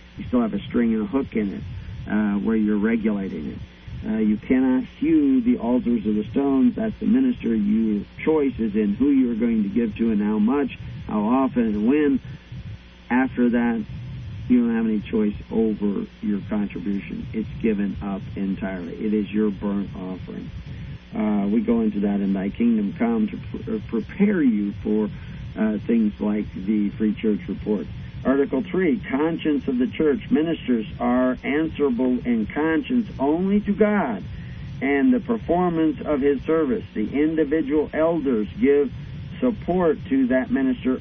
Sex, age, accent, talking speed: male, 50-69, American, 165 wpm